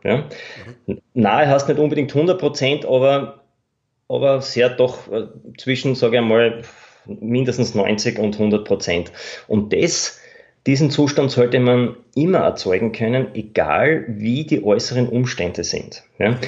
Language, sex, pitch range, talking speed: German, male, 115-135 Hz, 125 wpm